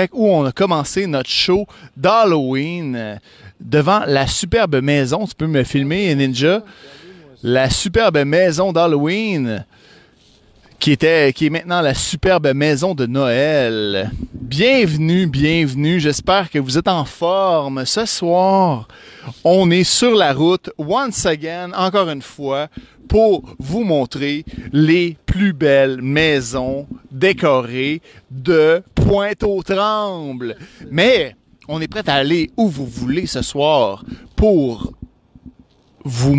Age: 30-49